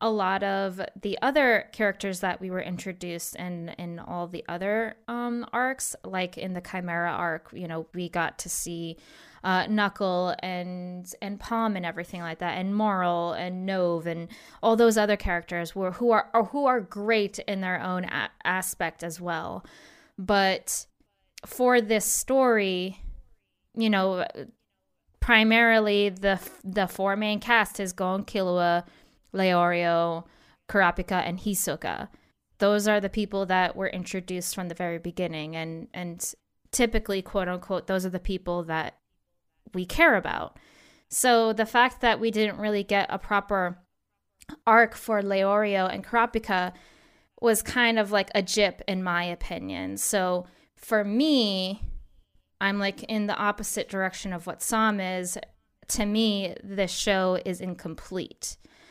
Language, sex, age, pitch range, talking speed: English, female, 20-39, 180-215 Hz, 150 wpm